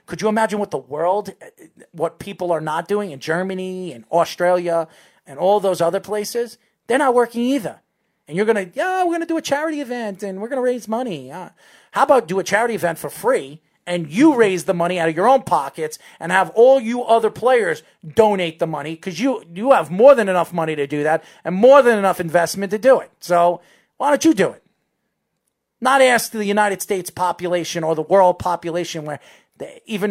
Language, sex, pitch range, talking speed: English, male, 170-230 Hz, 210 wpm